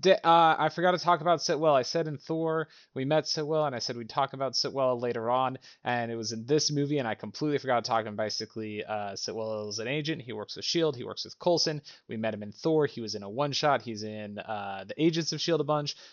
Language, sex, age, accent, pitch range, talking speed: English, male, 30-49, American, 110-145 Hz, 255 wpm